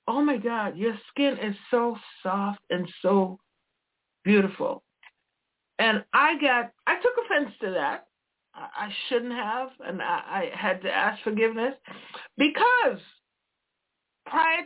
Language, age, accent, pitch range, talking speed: English, 60-79, American, 210-295 Hz, 125 wpm